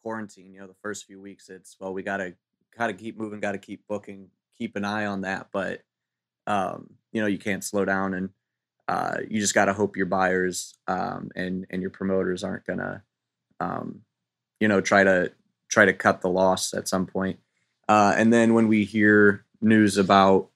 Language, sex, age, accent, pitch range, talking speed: English, male, 20-39, American, 95-105 Hz, 205 wpm